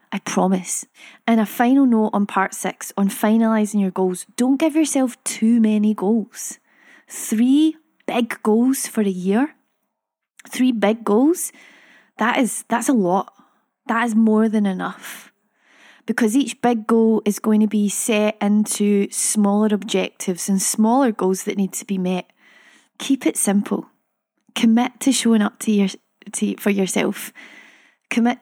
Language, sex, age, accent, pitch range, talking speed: English, female, 20-39, British, 205-250 Hz, 150 wpm